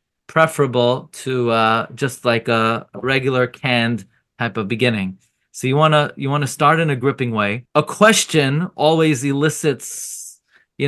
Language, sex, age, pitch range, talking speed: English, male, 30-49, 125-155 Hz, 150 wpm